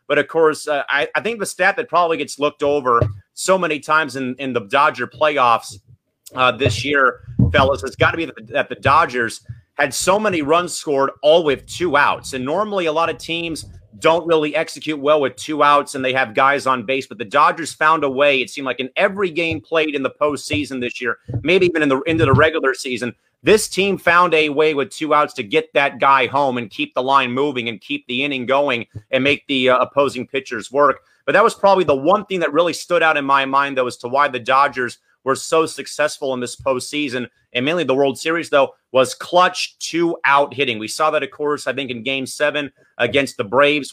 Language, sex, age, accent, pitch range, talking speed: English, male, 30-49, American, 130-155 Hz, 225 wpm